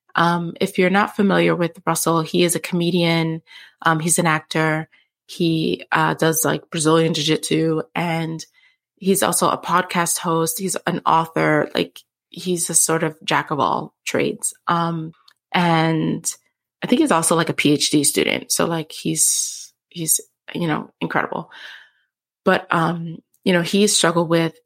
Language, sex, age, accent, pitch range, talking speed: English, female, 20-39, American, 160-180 Hz, 155 wpm